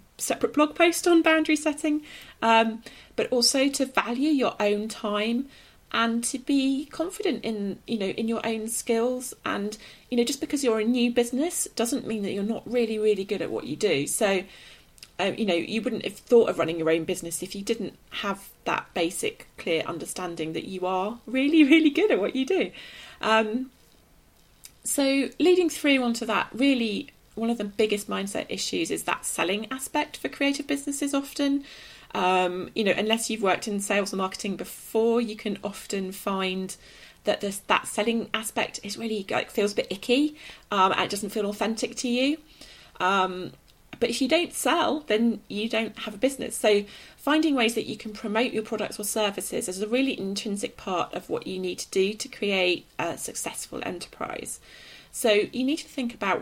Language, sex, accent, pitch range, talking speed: English, female, British, 205-270 Hz, 190 wpm